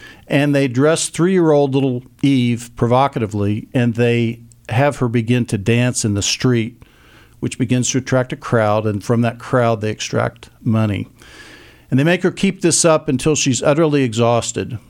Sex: male